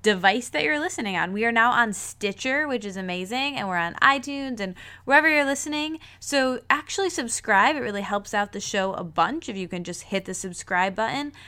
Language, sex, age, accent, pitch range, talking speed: English, female, 10-29, American, 175-245 Hz, 210 wpm